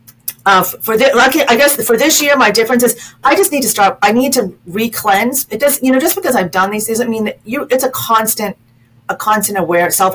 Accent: American